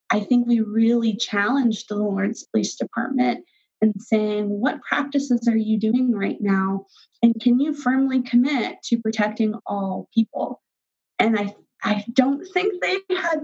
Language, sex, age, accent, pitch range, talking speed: English, female, 20-39, American, 220-270 Hz, 150 wpm